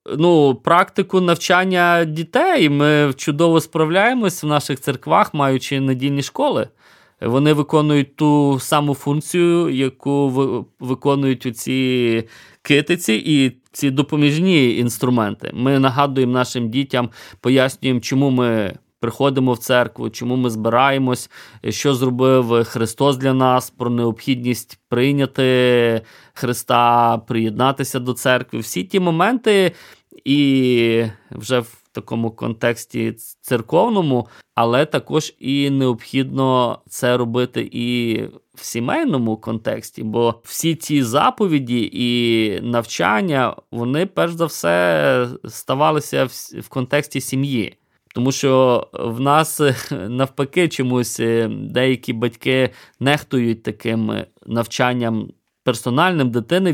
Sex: male